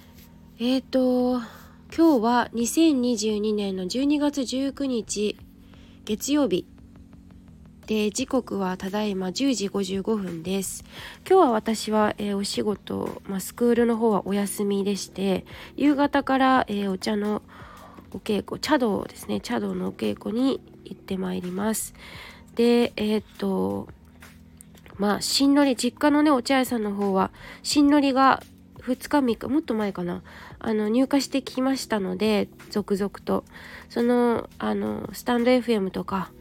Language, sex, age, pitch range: Japanese, female, 20-39, 195-240 Hz